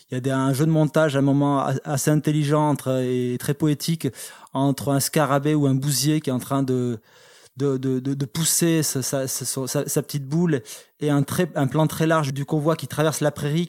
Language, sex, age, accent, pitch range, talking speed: French, male, 20-39, French, 140-160 Hz, 215 wpm